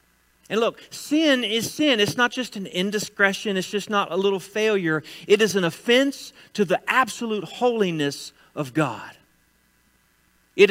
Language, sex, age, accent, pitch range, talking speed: English, male, 40-59, American, 165-245 Hz, 150 wpm